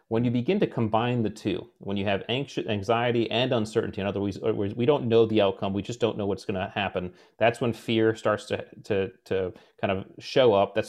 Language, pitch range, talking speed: English, 100-120 Hz, 230 wpm